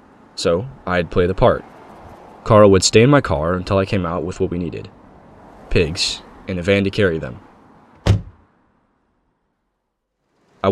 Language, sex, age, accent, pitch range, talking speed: English, male, 10-29, American, 90-110 Hz, 150 wpm